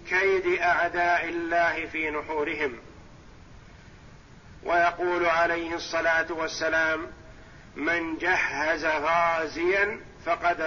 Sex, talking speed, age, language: male, 75 wpm, 50-69, Arabic